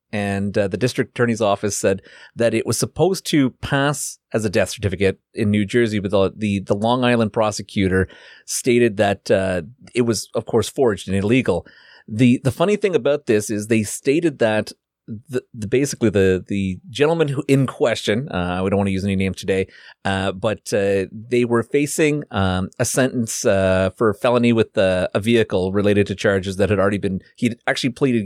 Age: 30-49